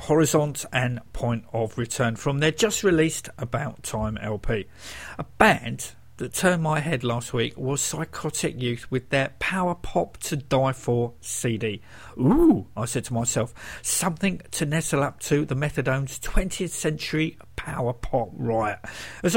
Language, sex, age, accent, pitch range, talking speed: English, male, 50-69, British, 125-170 Hz, 150 wpm